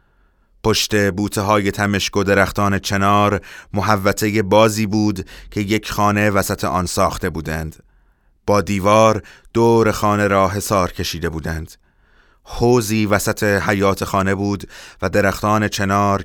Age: 30-49